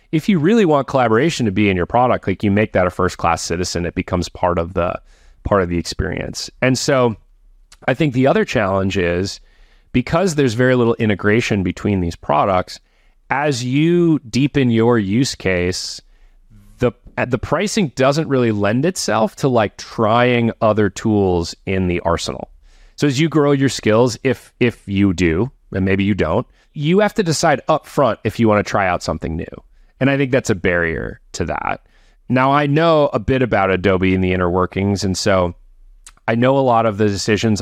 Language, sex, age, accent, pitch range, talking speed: English, male, 30-49, American, 95-125 Hz, 190 wpm